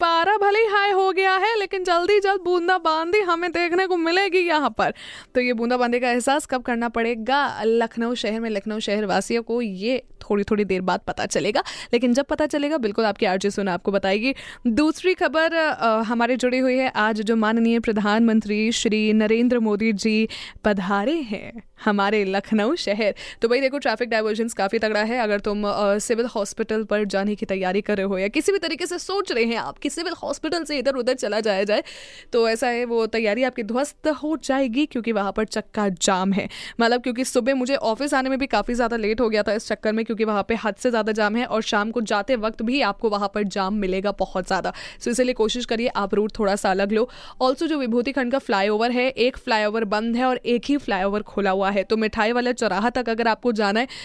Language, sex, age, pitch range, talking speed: Hindi, female, 20-39, 210-270 Hz, 190 wpm